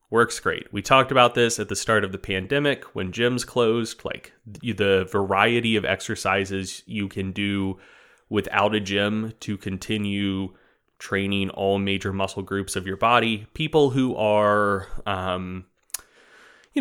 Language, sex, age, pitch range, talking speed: English, male, 20-39, 100-125 Hz, 145 wpm